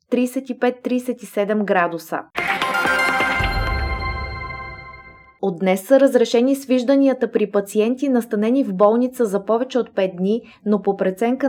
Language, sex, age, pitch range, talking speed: Bulgarian, female, 20-39, 200-245 Hz, 105 wpm